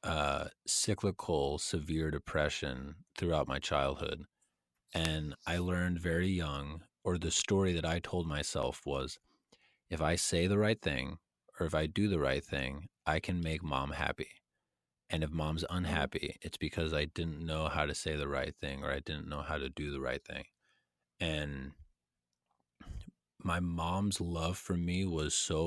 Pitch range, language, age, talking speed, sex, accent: 75-85 Hz, English, 30-49, 165 wpm, male, American